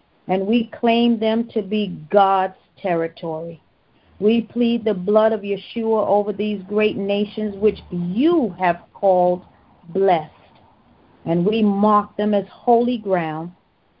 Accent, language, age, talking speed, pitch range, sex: American, English, 40-59, 130 wpm, 185-220 Hz, female